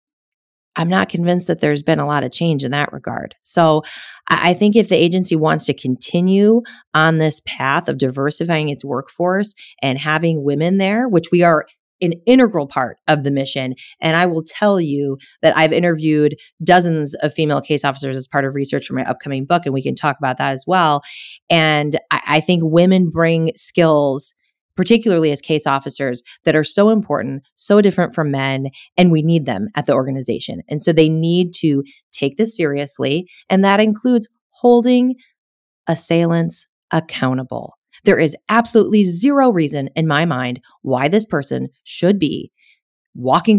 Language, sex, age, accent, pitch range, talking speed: English, female, 30-49, American, 145-180 Hz, 170 wpm